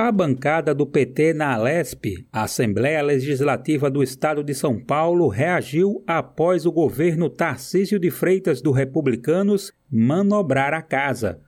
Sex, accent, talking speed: male, Brazilian, 135 wpm